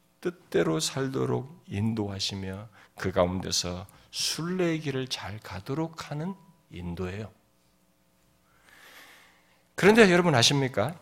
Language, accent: Korean, native